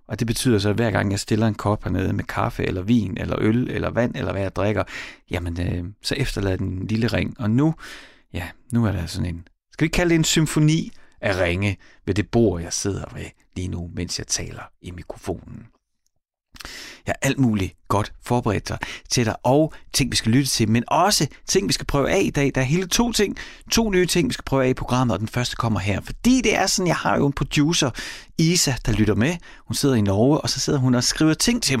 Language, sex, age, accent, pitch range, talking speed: Danish, male, 30-49, native, 105-145 Hz, 245 wpm